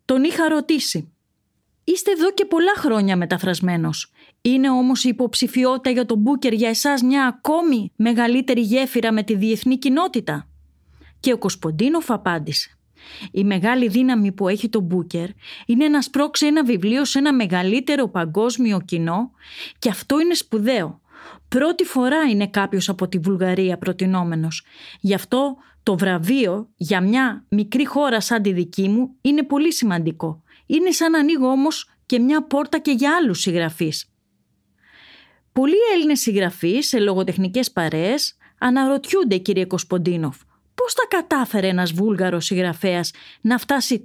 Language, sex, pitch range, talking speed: Greek, female, 185-275 Hz, 140 wpm